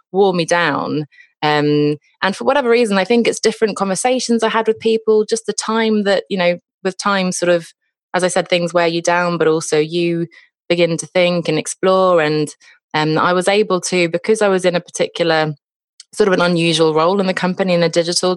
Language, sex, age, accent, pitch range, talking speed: English, female, 20-39, British, 150-185 Hz, 215 wpm